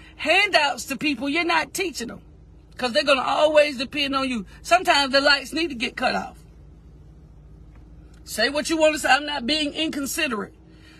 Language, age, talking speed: English, 50-69, 180 wpm